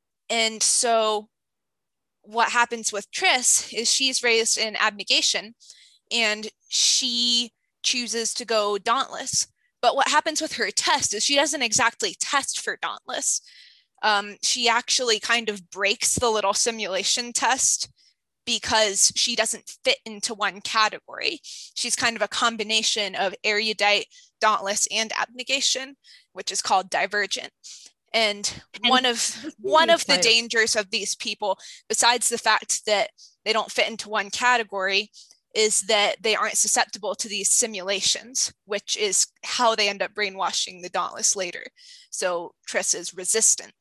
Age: 20-39